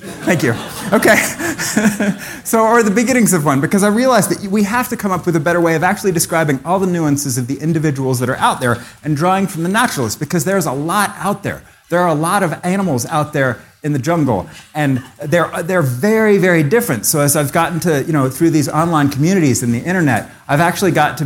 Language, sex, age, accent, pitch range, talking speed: English, male, 30-49, American, 135-180 Hz, 230 wpm